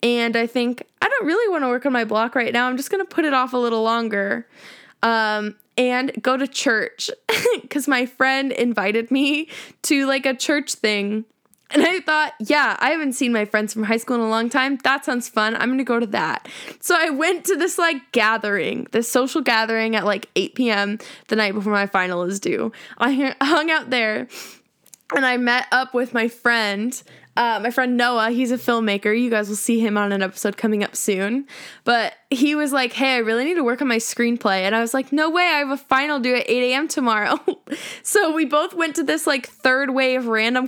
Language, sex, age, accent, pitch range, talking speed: English, female, 10-29, American, 225-285 Hz, 225 wpm